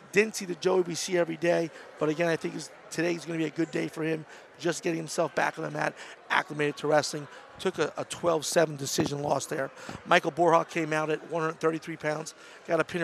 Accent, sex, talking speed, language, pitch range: American, male, 220 wpm, English, 160-185 Hz